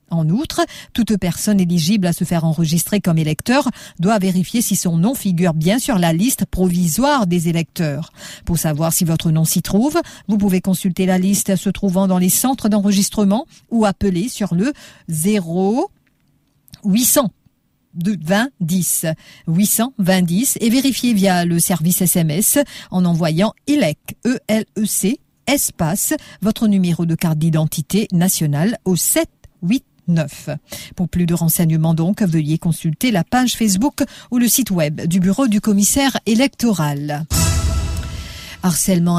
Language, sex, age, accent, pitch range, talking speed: English, female, 50-69, French, 165-210 Hz, 145 wpm